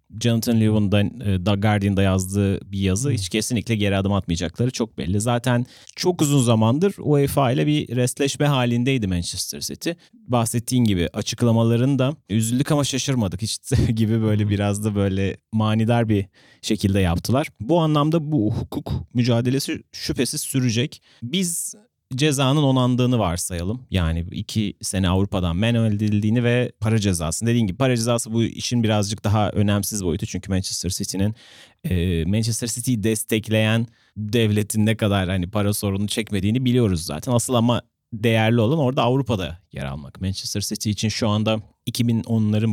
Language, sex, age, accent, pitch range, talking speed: Turkish, male, 30-49, native, 100-125 Hz, 140 wpm